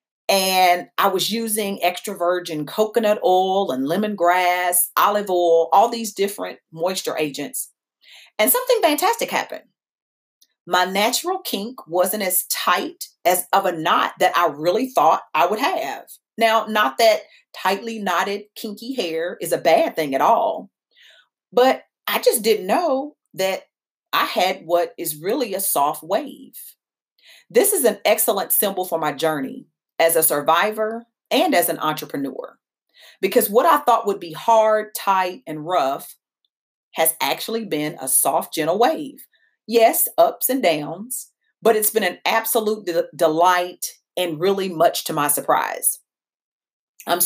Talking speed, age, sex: 145 wpm, 40-59, female